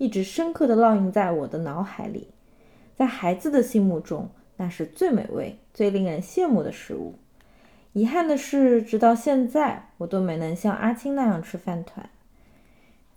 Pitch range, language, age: 200-275 Hz, Chinese, 20-39